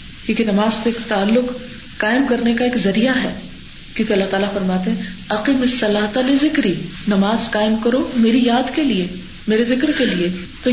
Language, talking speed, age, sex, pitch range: Urdu, 170 wpm, 40-59, female, 205-260 Hz